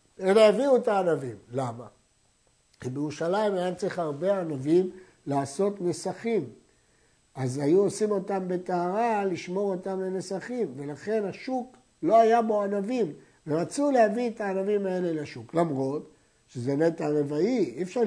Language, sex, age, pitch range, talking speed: Hebrew, male, 60-79, 160-225 Hz, 130 wpm